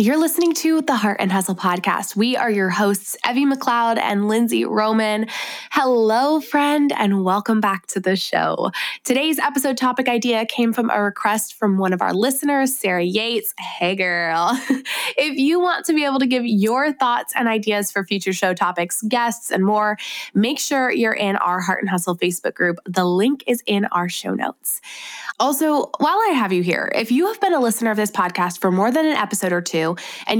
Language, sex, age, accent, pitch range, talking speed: English, female, 20-39, American, 190-255 Hz, 200 wpm